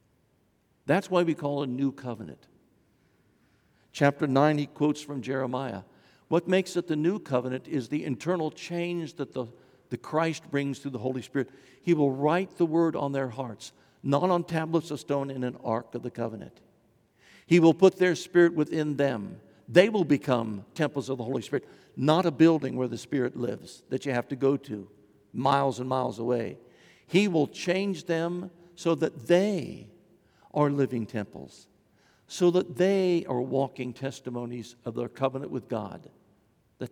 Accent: American